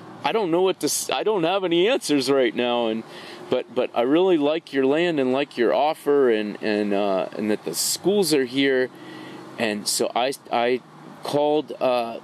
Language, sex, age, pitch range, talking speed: English, male, 40-59, 120-150 Hz, 190 wpm